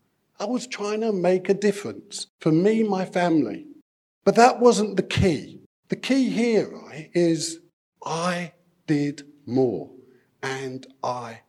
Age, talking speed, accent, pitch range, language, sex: 50-69, 135 wpm, British, 130-180 Hz, English, male